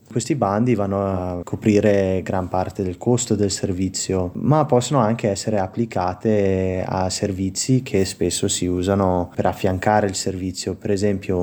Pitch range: 95-110 Hz